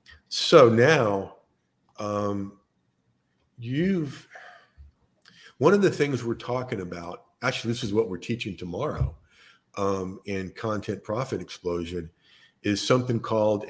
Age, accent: 50-69, American